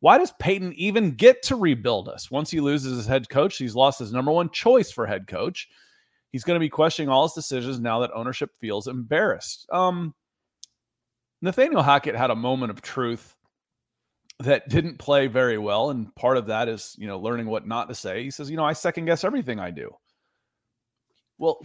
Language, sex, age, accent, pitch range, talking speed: English, male, 30-49, American, 125-175 Hz, 200 wpm